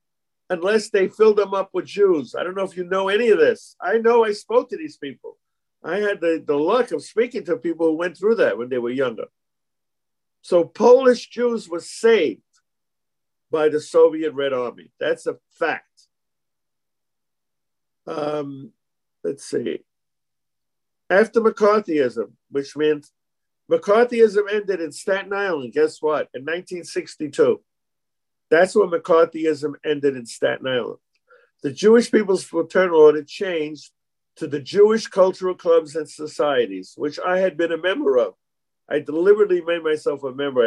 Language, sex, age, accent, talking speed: English, male, 50-69, American, 150 wpm